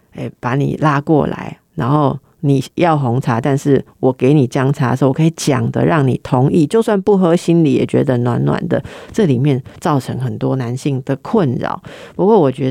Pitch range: 140-185 Hz